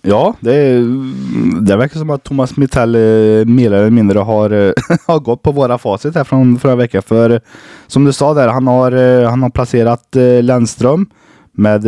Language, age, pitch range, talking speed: Swedish, 20-39, 95-120 Hz, 175 wpm